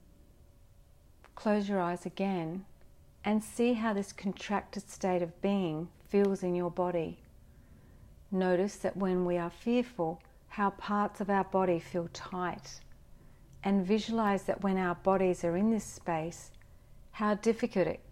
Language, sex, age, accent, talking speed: English, female, 40-59, Australian, 135 wpm